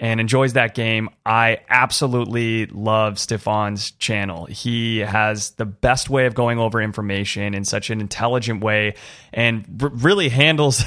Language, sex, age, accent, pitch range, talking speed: English, male, 30-49, American, 110-130 Hz, 150 wpm